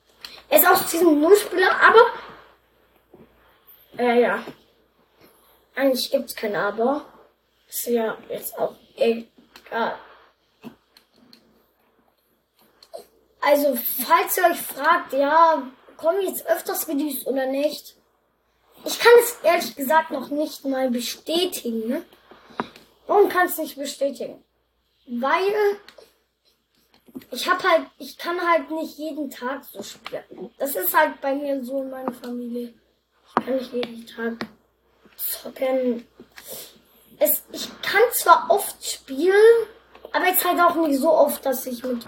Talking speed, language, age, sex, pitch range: 125 wpm, German, 10-29, female, 255-335 Hz